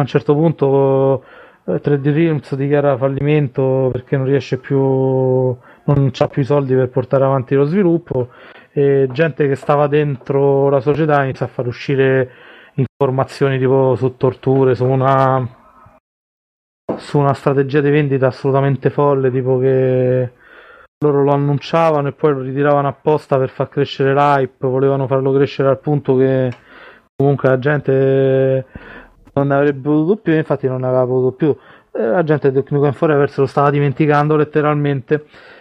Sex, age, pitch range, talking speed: male, 20-39, 130-150 Hz, 155 wpm